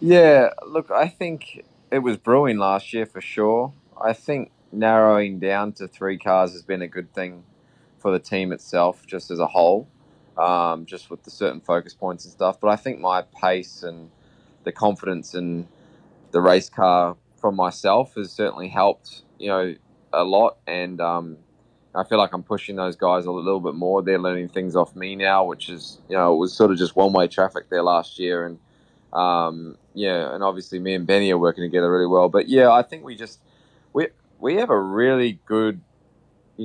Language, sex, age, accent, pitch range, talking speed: English, male, 20-39, Australian, 90-110 Hz, 200 wpm